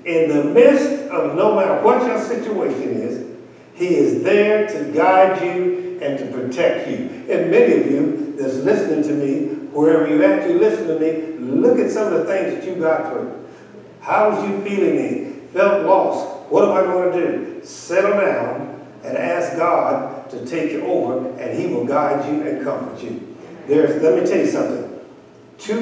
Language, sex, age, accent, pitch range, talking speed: English, male, 60-79, American, 150-245 Hz, 190 wpm